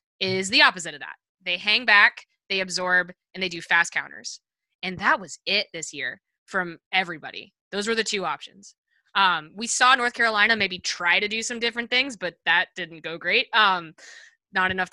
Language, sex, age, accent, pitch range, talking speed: English, female, 20-39, American, 175-220 Hz, 195 wpm